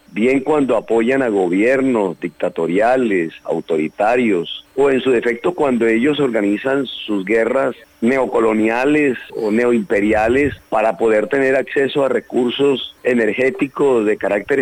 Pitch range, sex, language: 115-150 Hz, male, Spanish